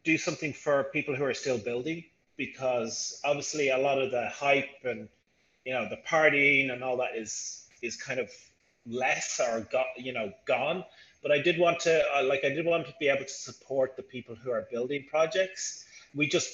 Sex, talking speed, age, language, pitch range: male, 205 wpm, 30-49, English, 120-155 Hz